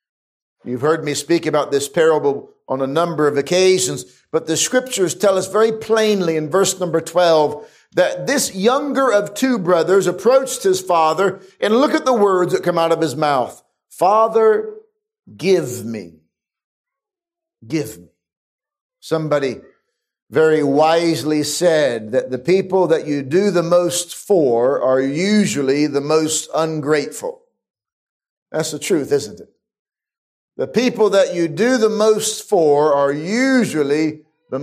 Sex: male